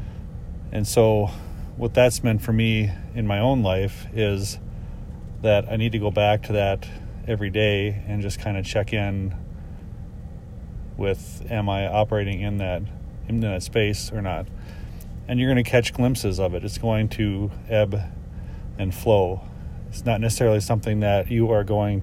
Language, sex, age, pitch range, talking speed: English, male, 40-59, 100-115 Hz, 165 wpm